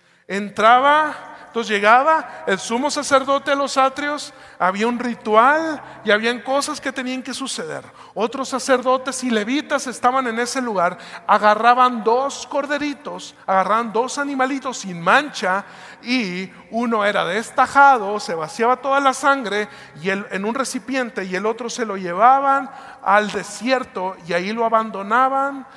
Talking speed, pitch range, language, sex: 140 wpm, 205-270 Hz, Spanish, male